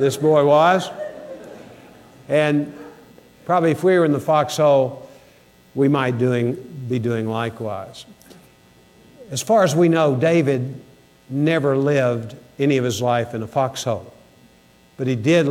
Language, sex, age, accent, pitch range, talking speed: English, male, 50-69, American, 120-155 Hz, 130 wpm